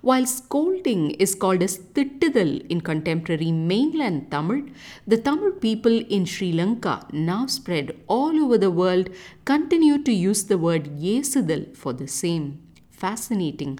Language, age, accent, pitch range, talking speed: English, 50-69, Indian, 160-235 Hz, 140 wpm